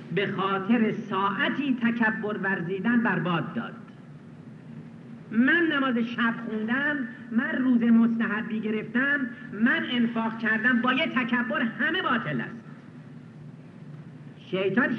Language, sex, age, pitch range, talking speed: Persian, male, 50-69, 195-245 Hz, 105 wpm